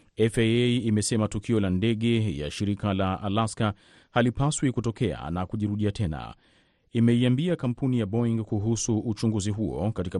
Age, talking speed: 40-59, 130 wpm